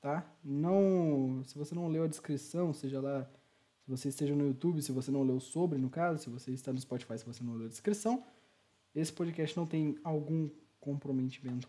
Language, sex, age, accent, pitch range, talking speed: Portuguese, male, 20-39, Brazilian, 125-160 Hz, 195 wpm